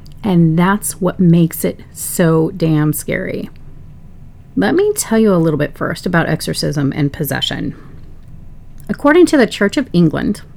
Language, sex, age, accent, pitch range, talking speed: English, female, 30-49, American, 160-205 Hz, 150 wpm